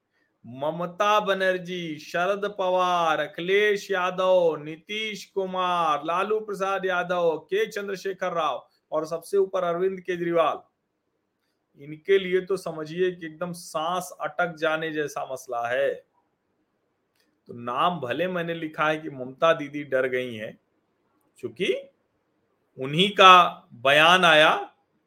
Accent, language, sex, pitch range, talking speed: native, Hindi, male, 150-195 Hz, 115 wpm